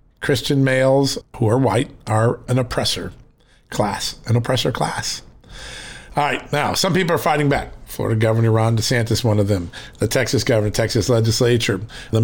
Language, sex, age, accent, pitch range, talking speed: English, male, 50-69, American, 115-145 Hz, 160 wpm